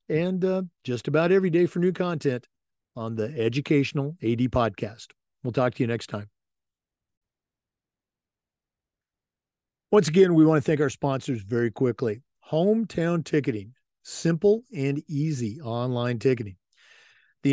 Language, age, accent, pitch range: English, 50-69, American, 120-150 Hz